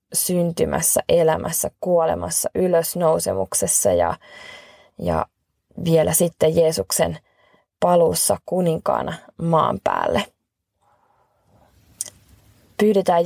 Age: 20-39